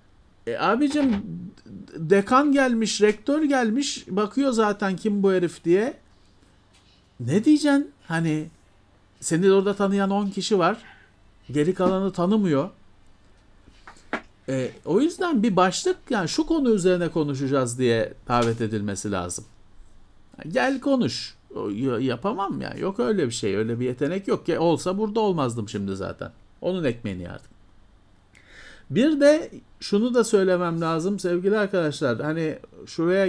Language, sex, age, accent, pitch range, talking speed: Turkish, male, 50-69, native, 125-200 Hz, 125 wpm